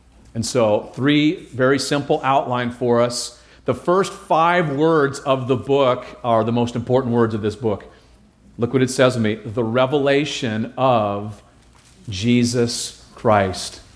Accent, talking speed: American, 145 wpm